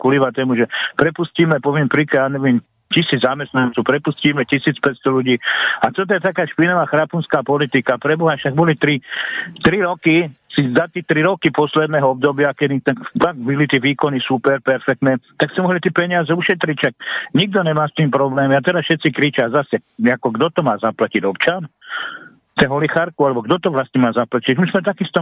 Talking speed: 170 wpm